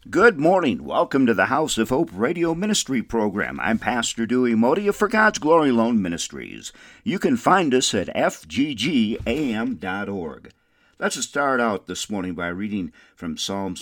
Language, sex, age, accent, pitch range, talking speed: English, male, 50-69, American, 90-120 Hz, 150 wpm